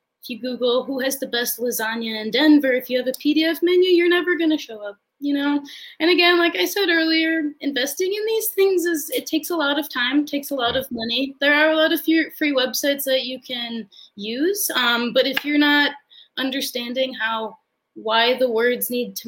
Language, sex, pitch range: English, female, 230-315 Hz